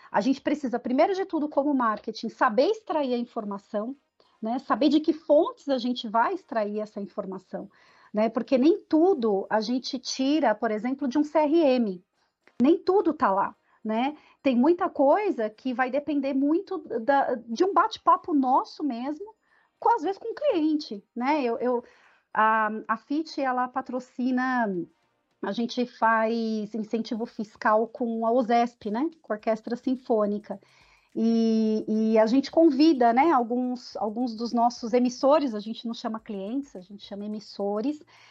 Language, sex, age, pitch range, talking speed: Portuguese, female, 40-59, 215-280 Hz, 160 wpm